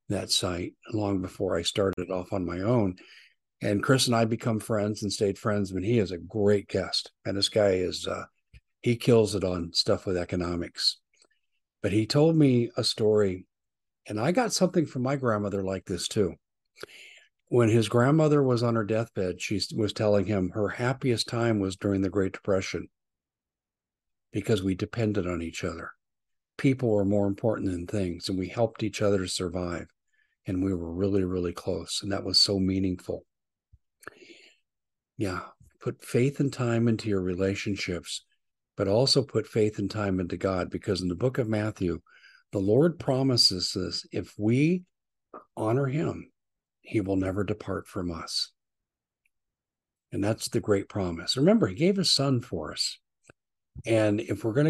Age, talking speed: 60-79, 170 wpm